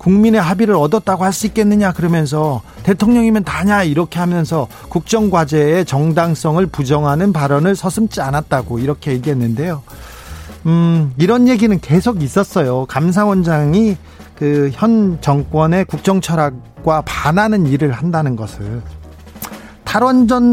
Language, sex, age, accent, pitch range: Korean, male, 40-59, native, 140-200 Hz